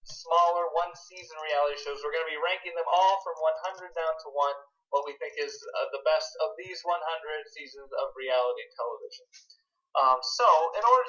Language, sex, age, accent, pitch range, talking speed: English, male, 30-49, American, 145-210 Hz, 190 wpm